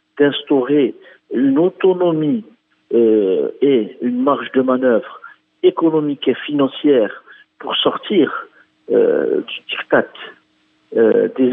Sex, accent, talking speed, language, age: male, French, 100 wpm, French, 50-69